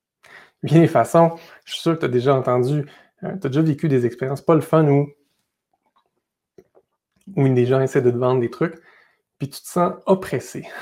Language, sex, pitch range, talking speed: French, male, 130-165 Hz, 200 wpm